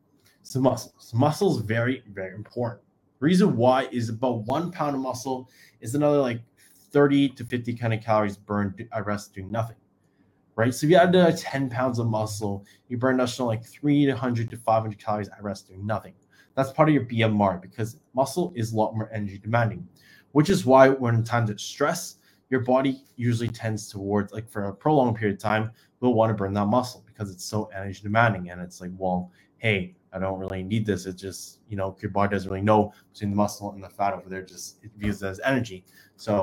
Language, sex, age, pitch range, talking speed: English, male, 20-39, 100-120 Hz, 215 wpm